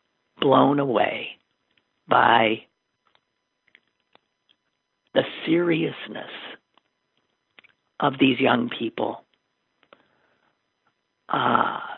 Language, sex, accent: English, male, American